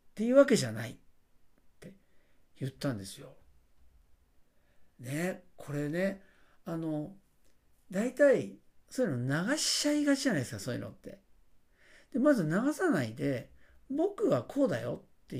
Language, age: Japanese, 50-69